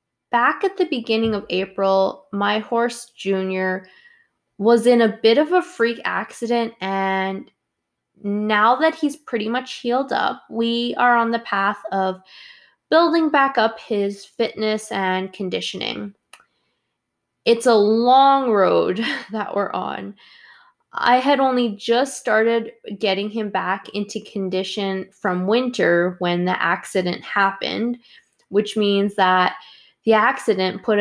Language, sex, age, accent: English, female, 20-39, American